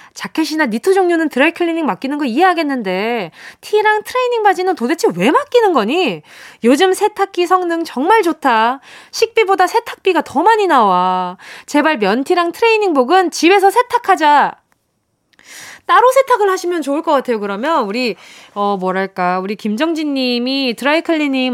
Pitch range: 230-375 Hz